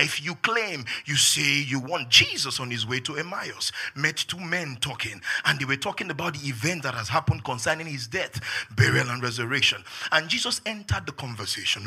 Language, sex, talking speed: English, male, 190 wpm